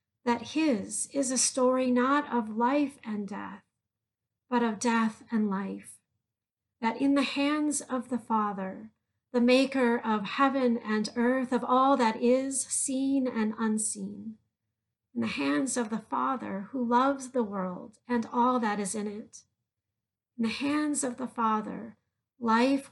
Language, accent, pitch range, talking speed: English, American, 195-250 Hz, 150 wpm